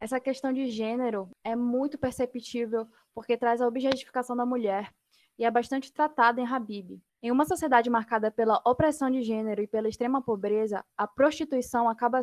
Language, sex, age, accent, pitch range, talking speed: Portuguese, female, 10-29, Brazilian, 225-270 Hz, 165 wpm